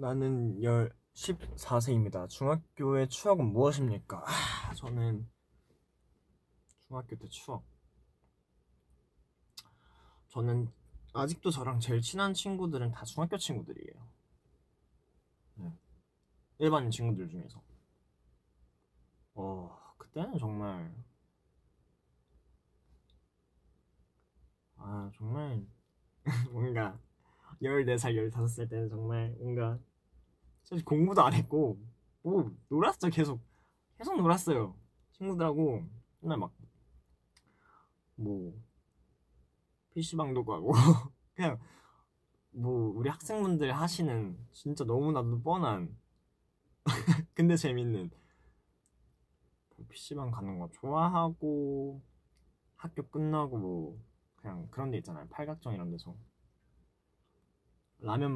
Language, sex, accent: Korean, male, native